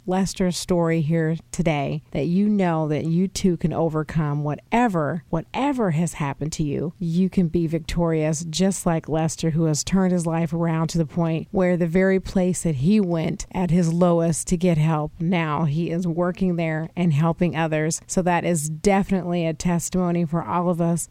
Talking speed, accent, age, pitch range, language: 185 wpm, American, 40-59, 165-180 Hz, English